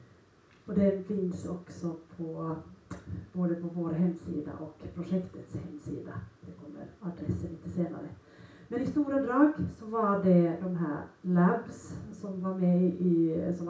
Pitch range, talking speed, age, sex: 170-195 Hz, 140 wpm, 40-59, female